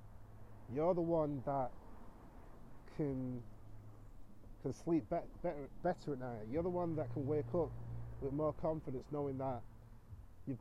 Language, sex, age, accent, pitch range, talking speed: English, male, 30-49, British, 105-150 Hz, 140 wpm